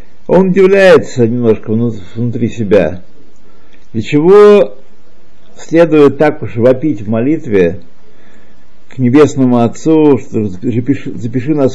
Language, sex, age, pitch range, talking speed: Russian, male, 50-69, 115-155 Hz, 100 wpm